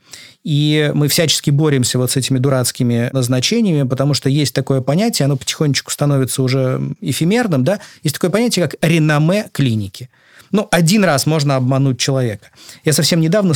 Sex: male